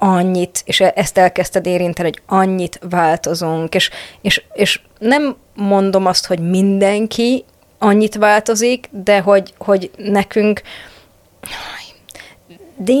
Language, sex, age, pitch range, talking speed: Hungarian, female, 20-39, 175-190 Hz, 105 wpm